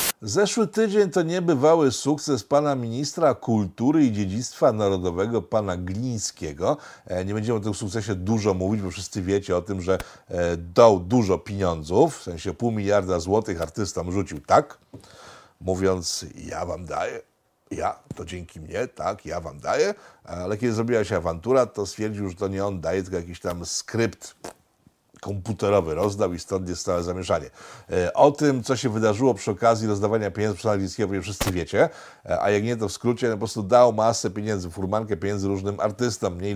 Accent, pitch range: native, 95-135 Hz